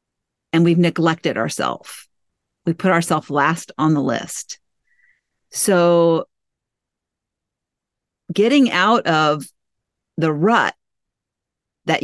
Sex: female